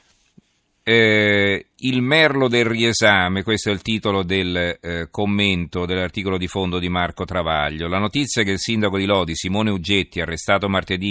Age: 40-59